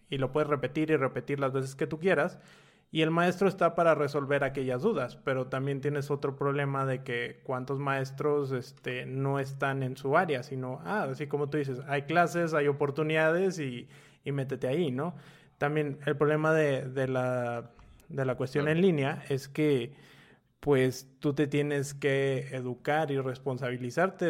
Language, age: Spanish, 20-39